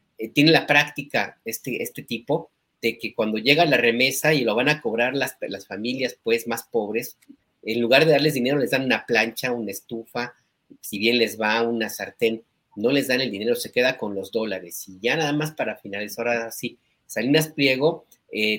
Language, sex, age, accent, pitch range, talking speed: Spanish, male, 40-59, Mexican, 110-140 Hz, 195 wpm